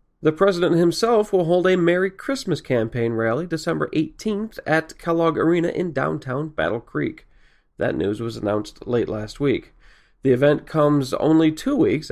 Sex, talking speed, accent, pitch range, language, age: male, 160 wpm, American, 120-160 Hz, English, 40-59